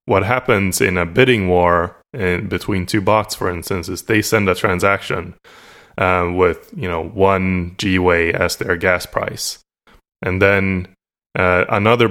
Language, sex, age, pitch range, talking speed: English, male, 20-39, 90-110 Hz, 155 wpm